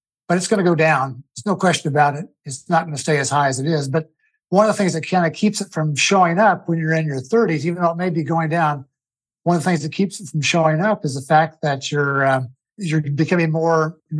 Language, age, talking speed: English, 50-69, 280 wpm